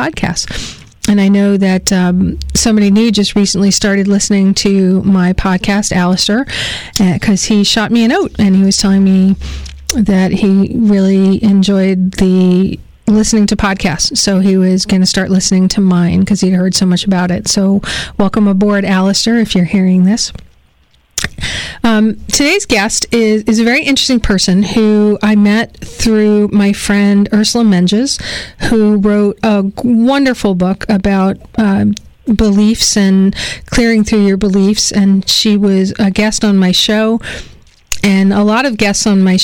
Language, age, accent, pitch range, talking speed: English, 40-59, American, 190-215 Hz, 160 wpm